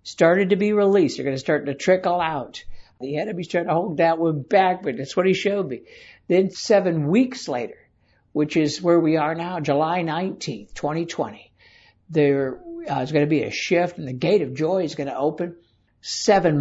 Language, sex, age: English, male, 60-79